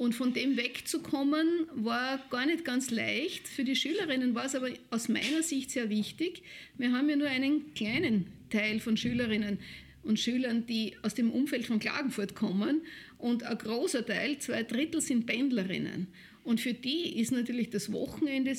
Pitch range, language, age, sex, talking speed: 230-280 Hz, German, 50-69, female, 170 wpm